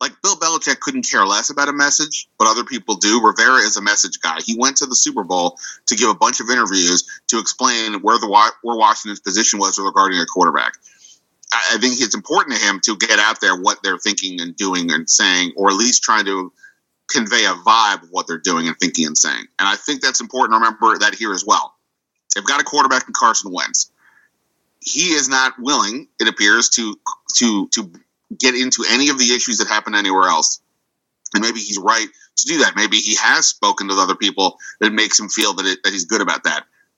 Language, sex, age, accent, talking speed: English, male, 30-49, American, 220 wpm